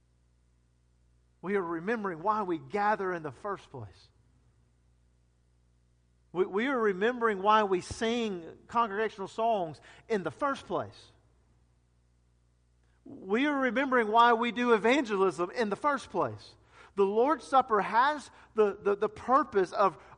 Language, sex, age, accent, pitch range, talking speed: English, male, 50-69, American, 120-200 Hz, 130 wpm